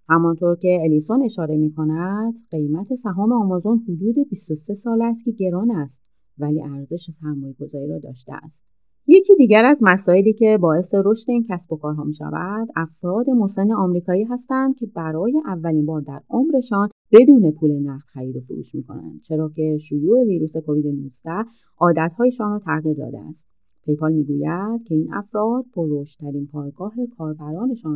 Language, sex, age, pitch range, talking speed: Persian, female, 30-49, 155-220 Hz, 150 wpm